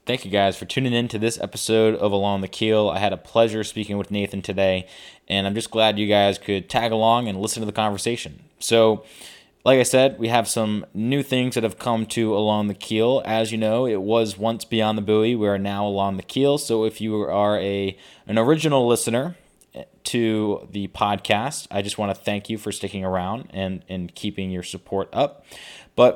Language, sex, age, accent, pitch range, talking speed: English, male, 20-39, American, 100-120 Hz, 210 wpm